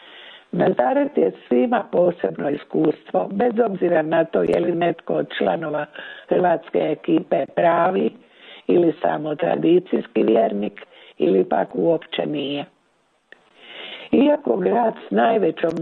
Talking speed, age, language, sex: 110 wpm, 60-79, Croatian, female